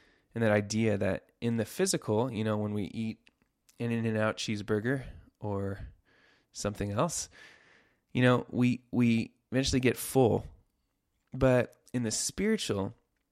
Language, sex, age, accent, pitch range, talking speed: English, male, 20-39, American, 100-120 Hz, 130 wpm